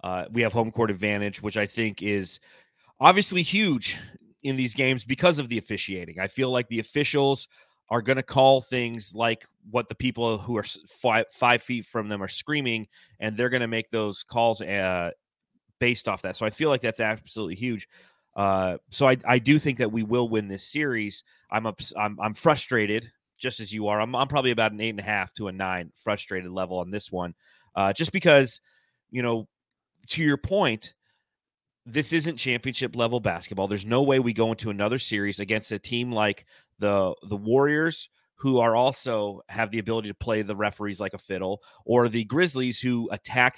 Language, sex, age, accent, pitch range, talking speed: English, male, 30-49, American, 105-130 Hz, 195 wpm